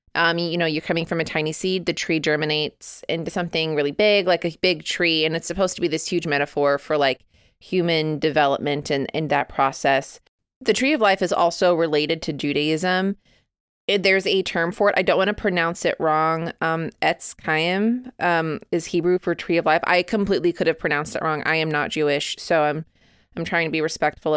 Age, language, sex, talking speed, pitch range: 20-39, English, female, 210 wpm, 155-185 Hz